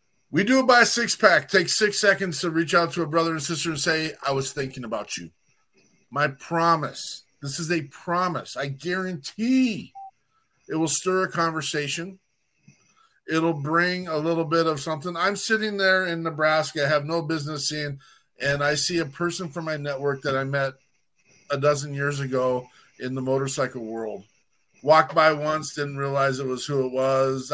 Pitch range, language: 130-165 Hz, English